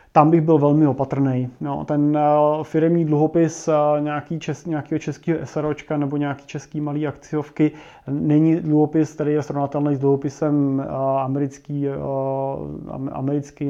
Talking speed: 120 wpm